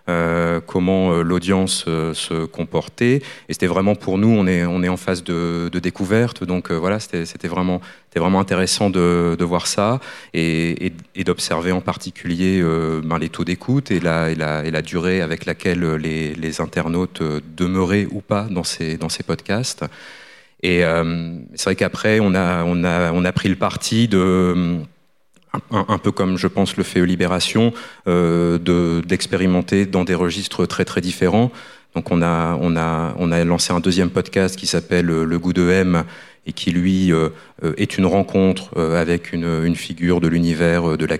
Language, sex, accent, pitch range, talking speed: French, male, French, 80-90 Hz, 185 wpm